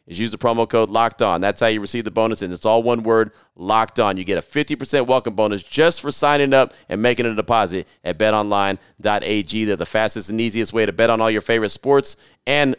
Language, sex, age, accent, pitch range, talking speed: English, male, 30-49, American, 110-135 Hz, 235 wpm